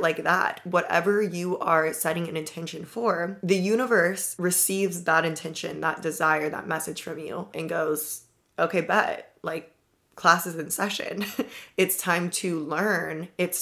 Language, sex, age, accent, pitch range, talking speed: English, female, 20-39, American, 165-190 Hz, 150 wpm